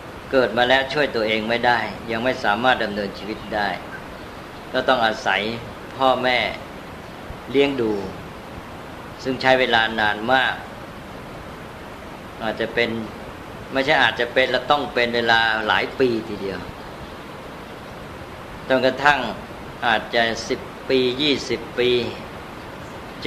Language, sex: Thai, female